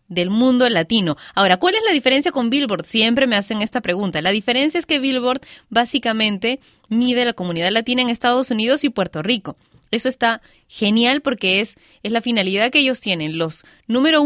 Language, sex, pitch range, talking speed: Spanish, female, 190-255 Hz, 185 wpm